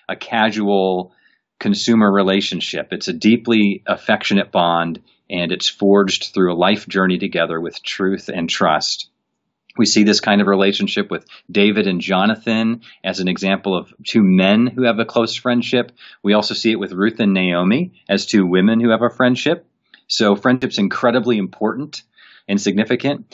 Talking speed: 160 wpm